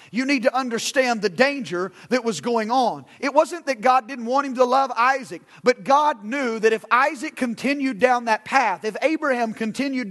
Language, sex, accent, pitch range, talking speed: English, male, American, 195-245 Hz, 195 wpm